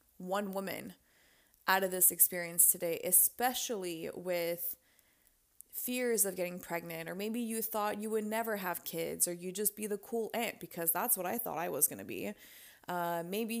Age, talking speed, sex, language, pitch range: 20-39, 175 wpm, female, English, 175-215 Hz